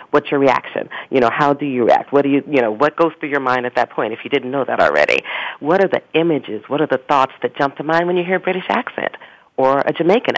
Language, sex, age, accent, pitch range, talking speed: English, female, 40-59, American, 125-160 Hz, 285 wpm